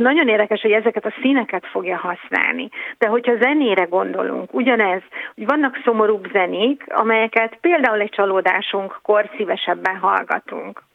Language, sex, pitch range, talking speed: Hungarian, female, 195-240 Hz, 125 wpm